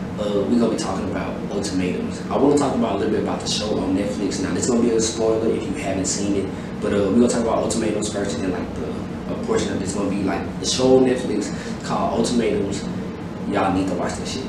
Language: English